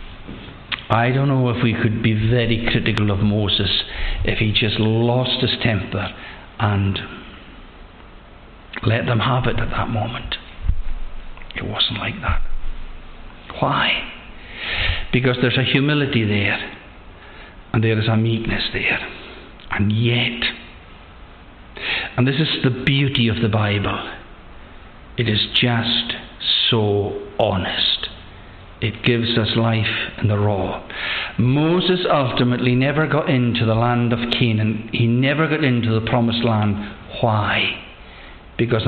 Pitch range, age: 100-125 Hz, 60-79